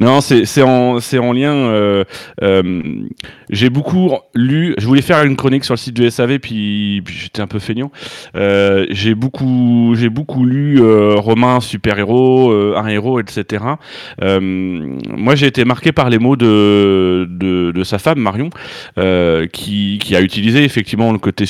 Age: 30-49